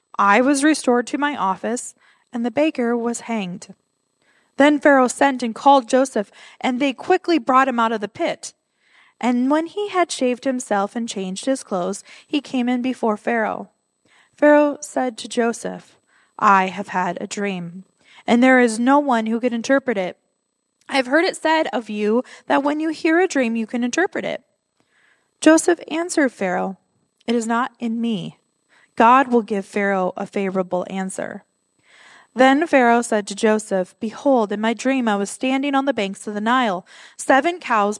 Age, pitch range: 20-39, 205-275 Hz